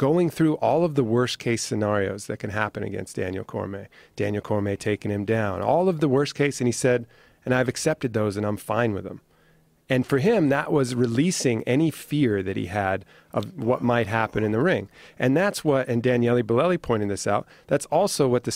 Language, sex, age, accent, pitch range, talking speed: English, male, 40-59, American, 105-140 Hz, 210 wpm